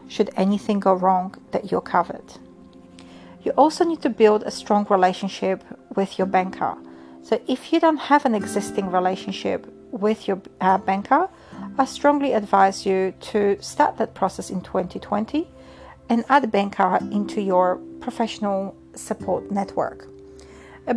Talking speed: 145 wpm